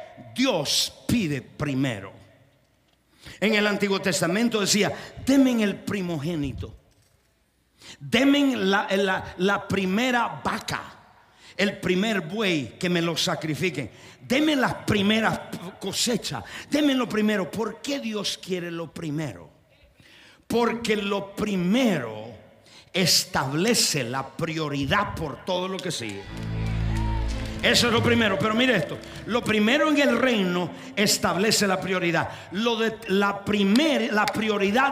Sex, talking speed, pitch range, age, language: male, 120 wpm, 165-235 Hz, 50-69, Spanish